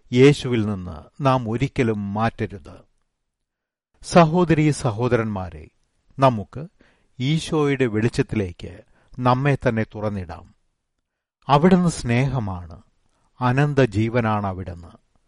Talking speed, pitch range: 65 wpm, 100-135 Hz